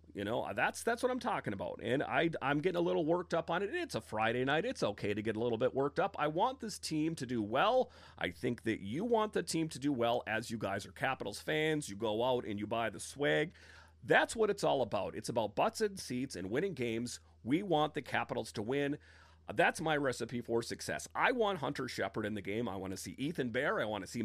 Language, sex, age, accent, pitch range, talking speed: English, male, 40-59, American, 110-155 Hz, 255 wpm